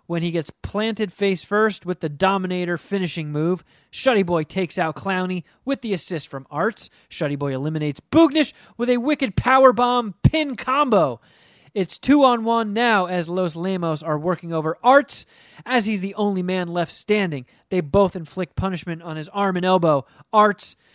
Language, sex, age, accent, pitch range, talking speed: English, male, 30-49, American, 165-215 Hz, 165 wpm